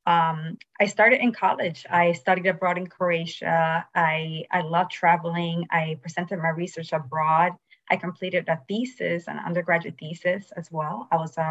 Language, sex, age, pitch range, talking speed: English, female, 20-39, 165-190 Hz, 160 wpm